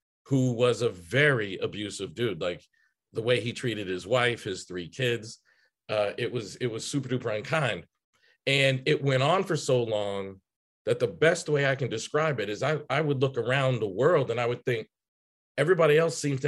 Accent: American